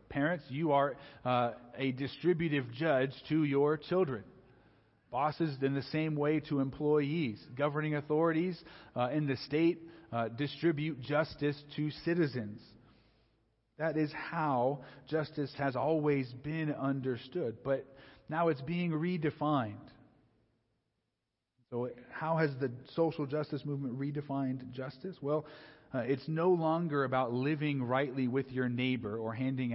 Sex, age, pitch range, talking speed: male, 40-59, 120-150 Hz, 125 wpm